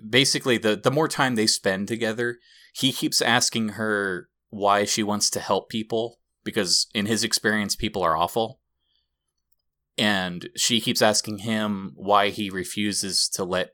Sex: male